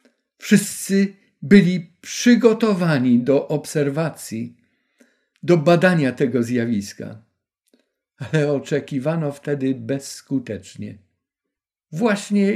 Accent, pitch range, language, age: native, 125-175 Hz, Polish, 50-69